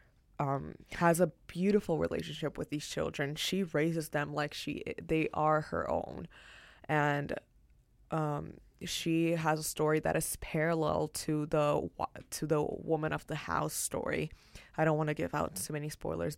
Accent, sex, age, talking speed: American, female, 20-39, 160 wpm